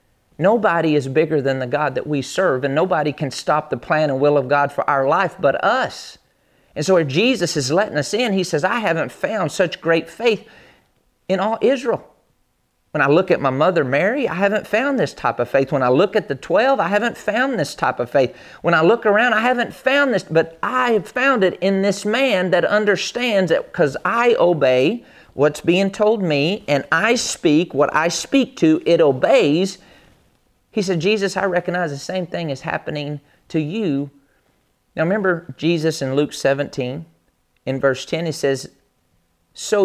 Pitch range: 140-200 Hz